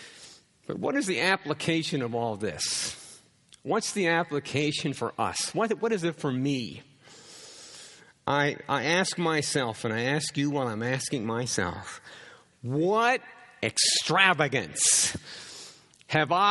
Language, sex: English, male